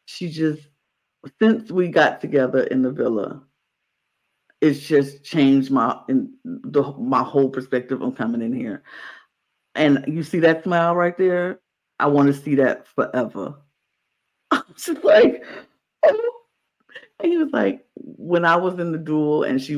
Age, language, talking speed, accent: 50-69, English, 150 wpm, American